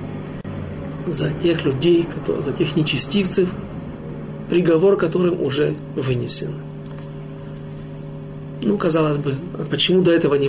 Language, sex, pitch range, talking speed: Russian, male, 140-185 Hz, 95 wpm